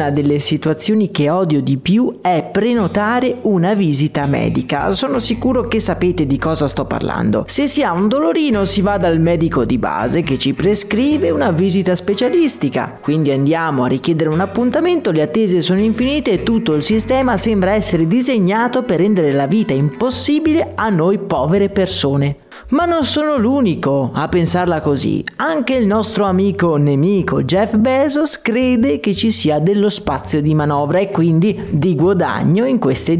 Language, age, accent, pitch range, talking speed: Italian, 30-49, native, 150-215 Hz, 165 wpm